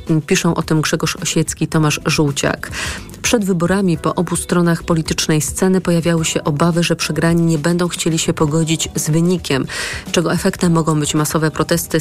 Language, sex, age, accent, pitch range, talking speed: Polish, female, 40-59, native, 160-185 Hz, 160 wpm